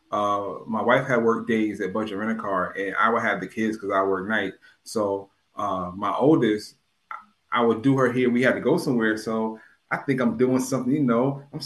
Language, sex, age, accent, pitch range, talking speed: English, male, 20-39, American, 110-155 Hz, 225 wpm